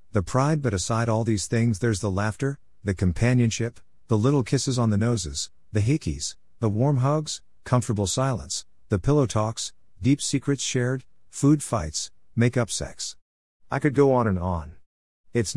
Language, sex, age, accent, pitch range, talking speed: English, male, 50-69, American, 90-120 Hz, 165 wpm